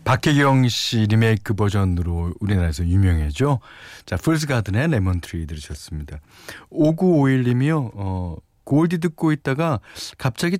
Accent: native